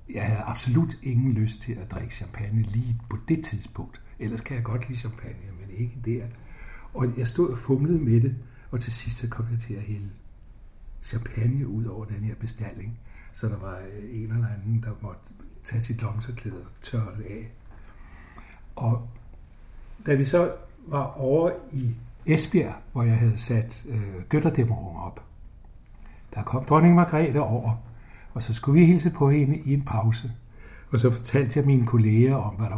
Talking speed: 180 wpm